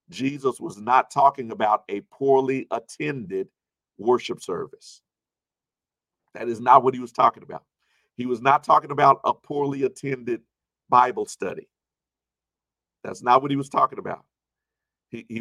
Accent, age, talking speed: American, 50-69, 140 wpm